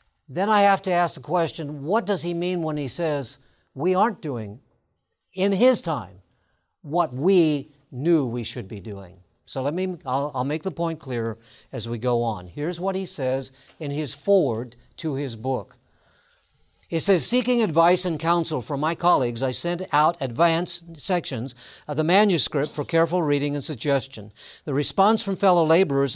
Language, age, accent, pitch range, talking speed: English, 60-79, American, 130-175 Hz, 175 wpm